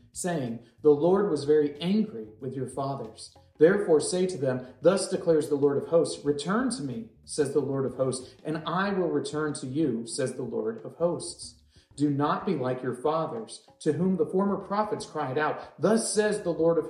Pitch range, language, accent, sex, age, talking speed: 135-180 Hz, English, American, male, 40-59, 200 wpm